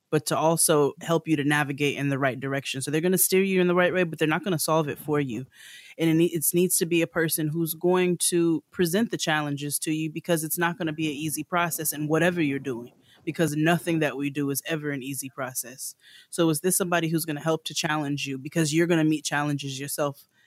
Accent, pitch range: American, 140-160 Hz